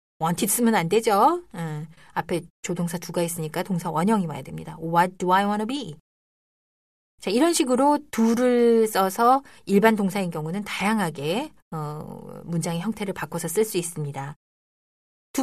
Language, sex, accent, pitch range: Korean, female, native, 165-225 Hz